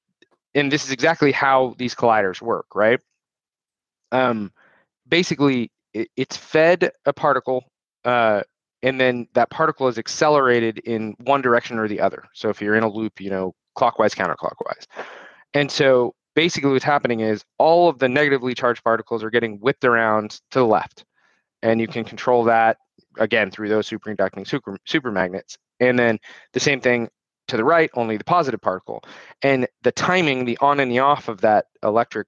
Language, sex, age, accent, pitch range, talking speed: English, male, 20-39, American, 115-145 Hz, 170 wpm